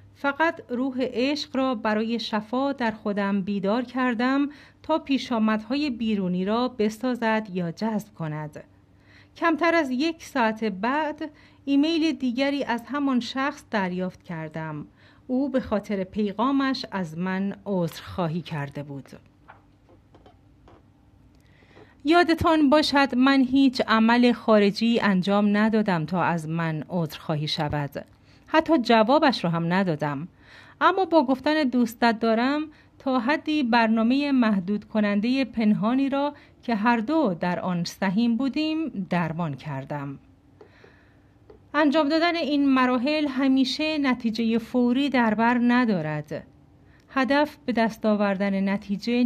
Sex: female